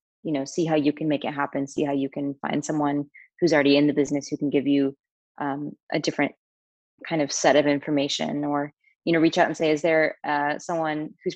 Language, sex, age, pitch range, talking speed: English, female, 20-39, 145-165 Hz, 230 wpm